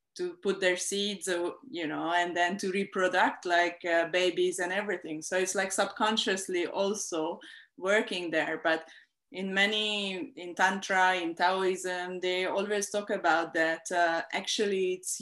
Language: English